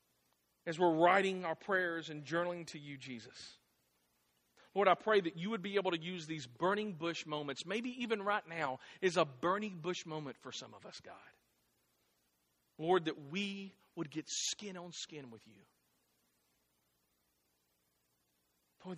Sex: male